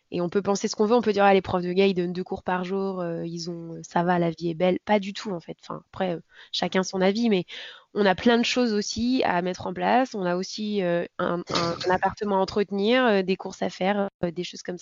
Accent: French